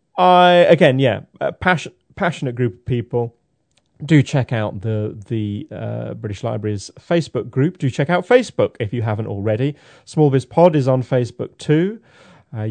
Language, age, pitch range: English, 30-49, 110-150 Hz